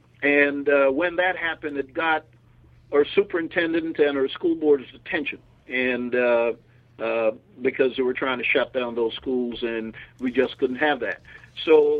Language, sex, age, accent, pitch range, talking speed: English, male, 50-69, American, 125-150 Hz, 160 wpm